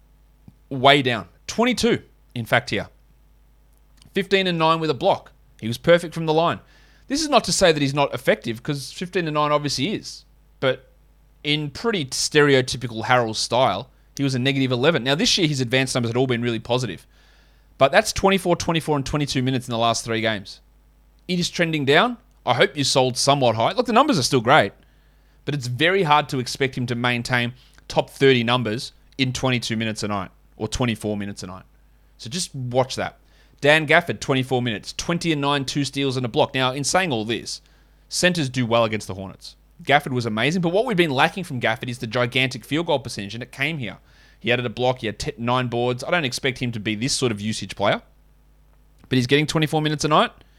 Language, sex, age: English, male, 30-49